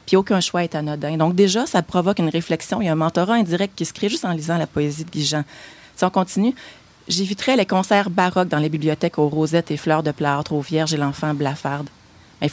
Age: 30-49